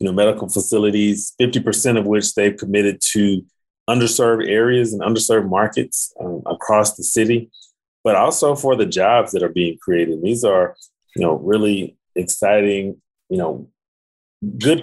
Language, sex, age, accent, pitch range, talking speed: English, male, 30-49, American, 95-110 Hz, 150 wpm